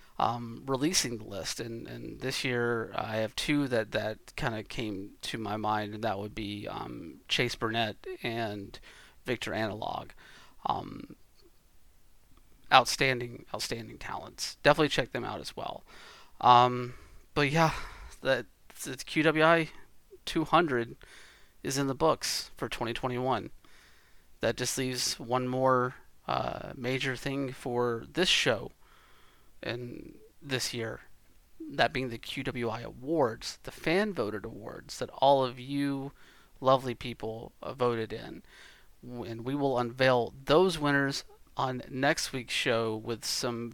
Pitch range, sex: 115-140 Hz, male